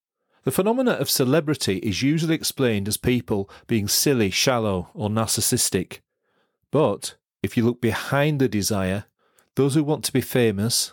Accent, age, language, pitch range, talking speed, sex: British, 40-59, English, 105-140 Hz, 150 wpm, male